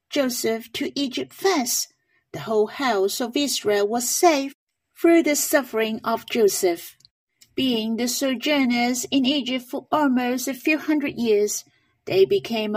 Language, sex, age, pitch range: Chinese, female, 50-69, 230-295 Hz